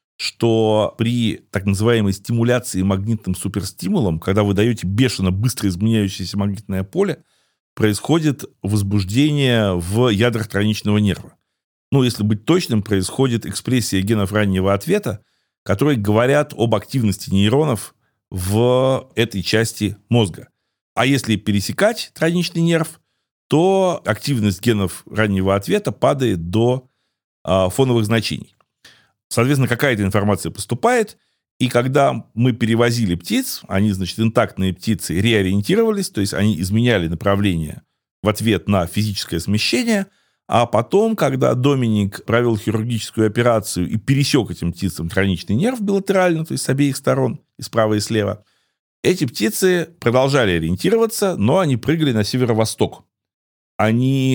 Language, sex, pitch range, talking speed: Russian, male, 100-130 Hz, 120 wpm